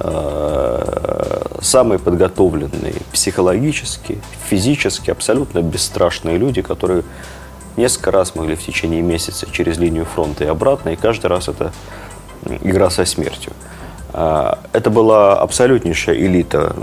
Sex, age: male, 30-49